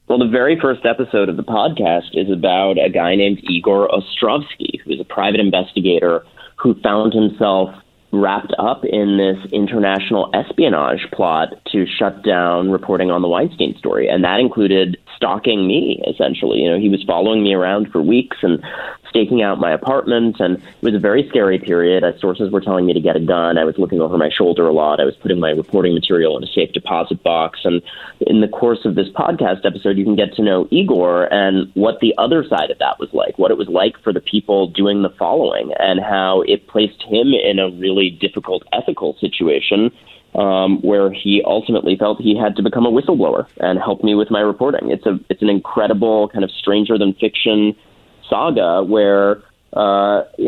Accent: American